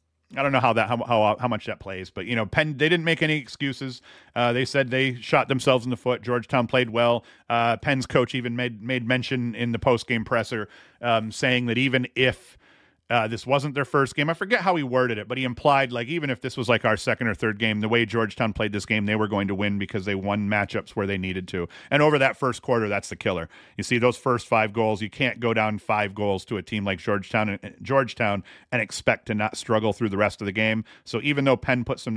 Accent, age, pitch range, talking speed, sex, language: American, 40-59, 110-140 Hz, 260 wpm, male, English